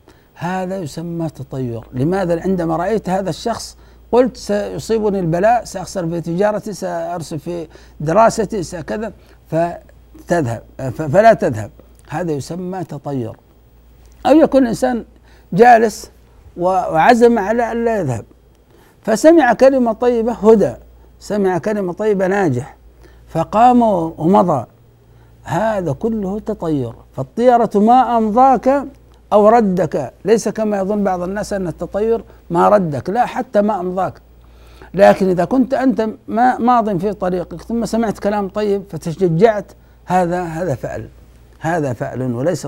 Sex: male